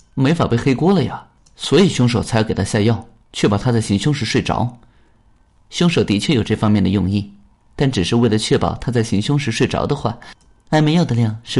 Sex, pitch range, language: male, 105-135 Hz, Chinese